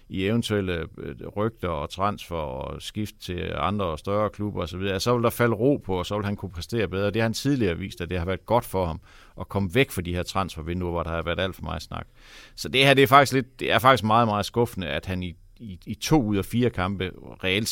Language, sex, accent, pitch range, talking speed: Danish, male, native, 90-115 Hz, 265 wpm